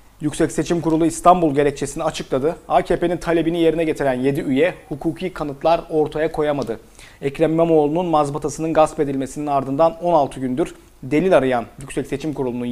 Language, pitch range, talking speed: Turkish, 135-160 Hz, 135 wpm